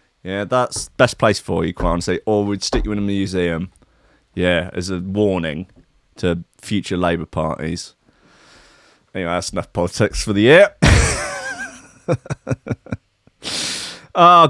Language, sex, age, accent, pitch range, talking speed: English, male, 30-49, British, 95-140 Hz, 125 wpm